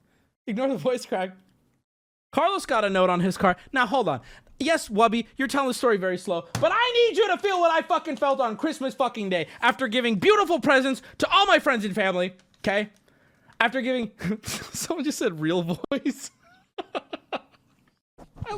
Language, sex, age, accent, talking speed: English, male, 20-39, American, 180 wpm